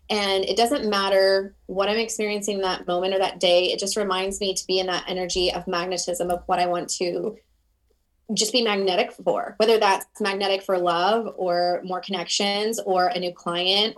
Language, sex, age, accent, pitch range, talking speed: English, female, 20-39, American, 185-210 Hz, 190 wpm